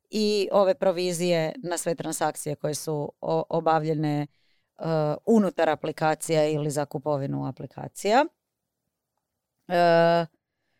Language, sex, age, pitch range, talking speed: Croatian, female, 30-49, 165-225 Hz, 95 wpm